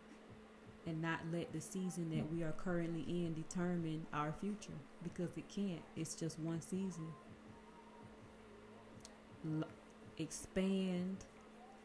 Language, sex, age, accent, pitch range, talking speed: English, female, 20-39, American, 165-180 Hz, 105 wpm